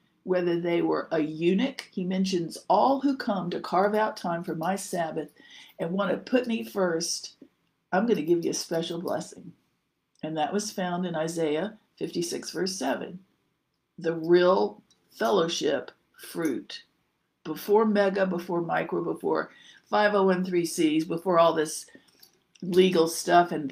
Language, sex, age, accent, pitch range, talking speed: English, female, 50-69, American, 165-200 Hz, 140 wpm